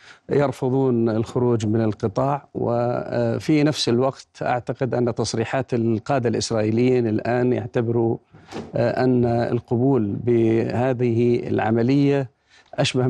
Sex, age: male, 50-69